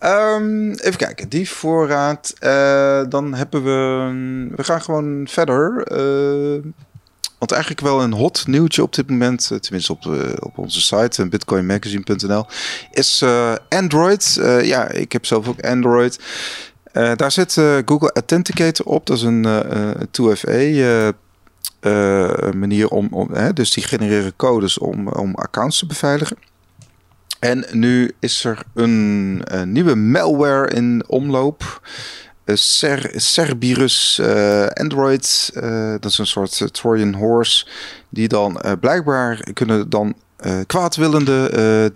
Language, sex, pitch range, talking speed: Dutch, male, 105-140 Hz, 140 wpm